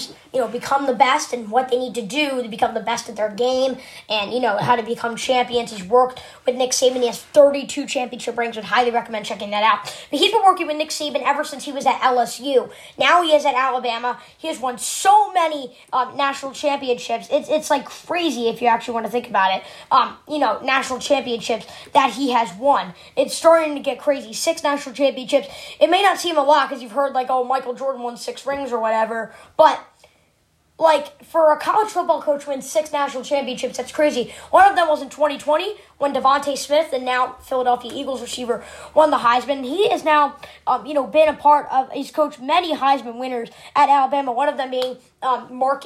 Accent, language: American, English